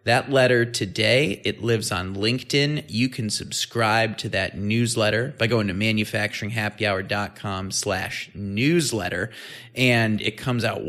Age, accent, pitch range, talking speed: 30-49, American, 105-125 Hz, 125 wpm